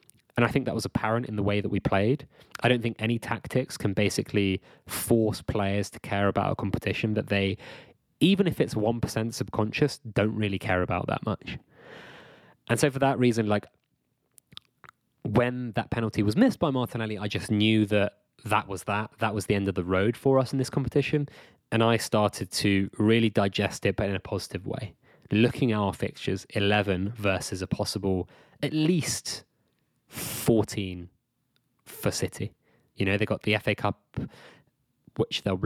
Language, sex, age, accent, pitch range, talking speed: English, male, 20-39, British, 100-125 Hz, 175 wpm